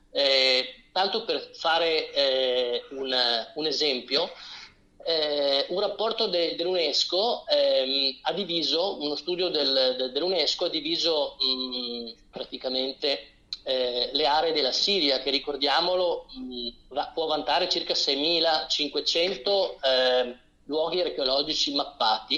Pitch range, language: 130-180 Hz, Italian